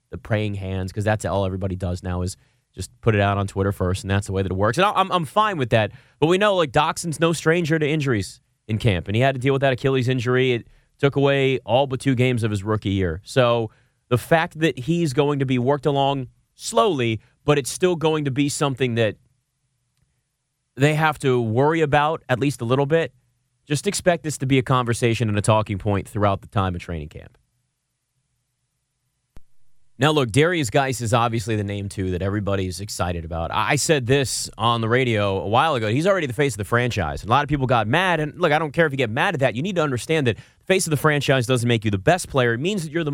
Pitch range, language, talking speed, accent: 115-150 Hz, English, 245 wpm, American